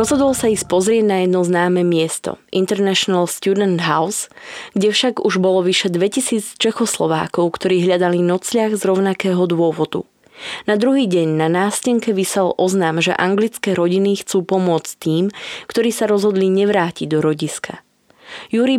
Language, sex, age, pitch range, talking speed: Slovak, female, 20-39, 170-215 Hz, 140 wpm